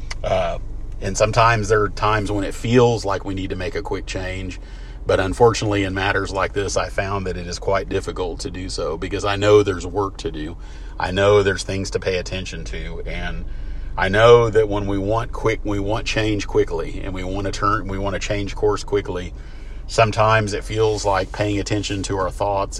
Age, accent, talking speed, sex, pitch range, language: 40-59, American, 210 wpm, male, 90-105 Hz, English